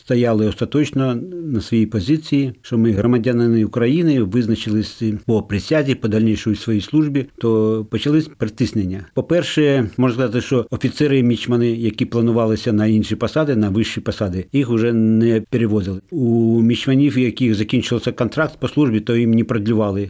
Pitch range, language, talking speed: 110-130 Hz, Ukrainian, 145 wpm